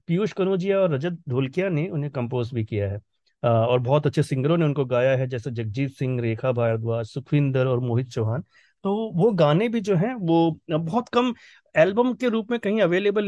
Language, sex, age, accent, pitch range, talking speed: Hindi, male, 30-49, native, 140-195 Hz, 200 wpm